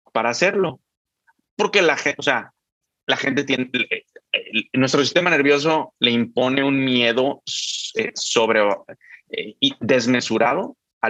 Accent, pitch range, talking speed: Mexican, 115-160 Hz, 135 wpm